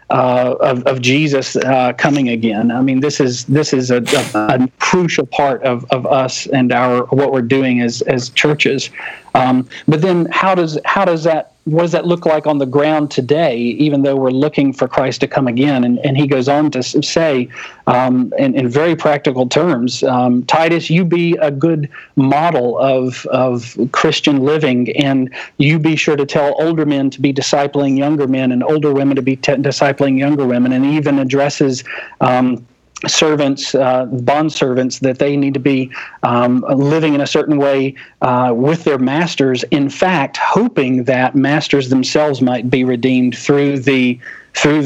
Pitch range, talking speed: 130-150 Hz, 180 wpm